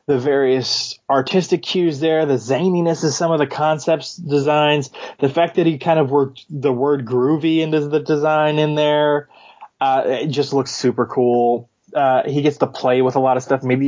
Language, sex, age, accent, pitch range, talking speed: English, male, 20-39, American, 120-145 Hz, 195 wpm